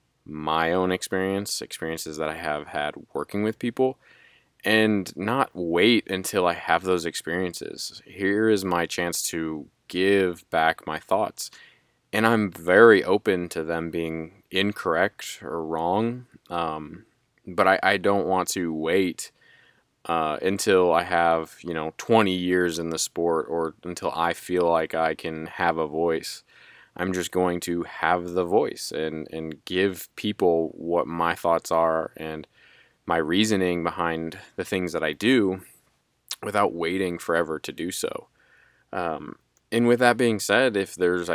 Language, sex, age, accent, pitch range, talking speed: English, male, 20-39, American, 80-100 Hz, 150 wpm